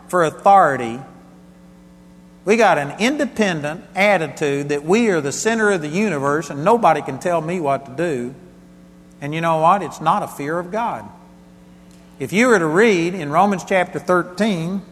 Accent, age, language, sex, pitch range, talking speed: American, 50-69, English, male, 125-185 Hz, 170 wpm